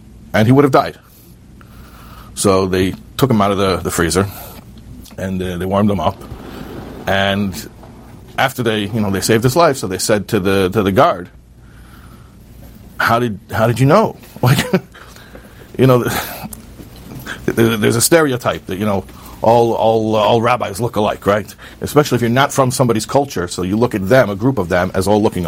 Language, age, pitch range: English, 40-59, 100-135 Hz